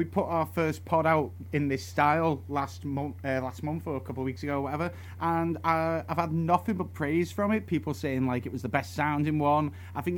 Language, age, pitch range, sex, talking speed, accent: English, 30-49, 130-165 Hz, male, 250 wpm, British